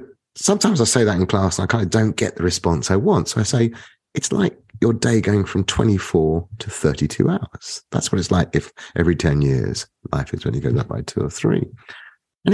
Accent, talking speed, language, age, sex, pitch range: British, 230 wpm, English, 30-49, male, 80-115 Hz